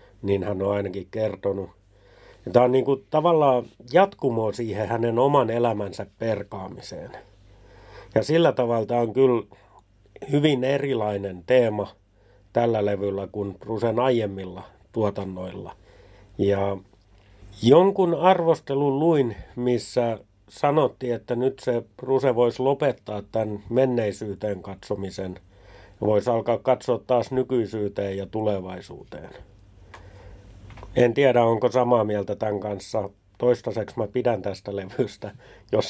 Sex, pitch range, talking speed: male, 100-120 Hz, 110 wpm